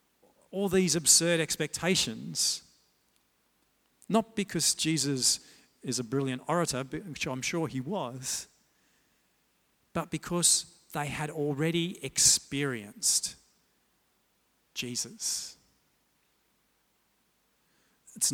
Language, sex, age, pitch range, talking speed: English, male, 50-69, 130-160 Hz, 80 wpm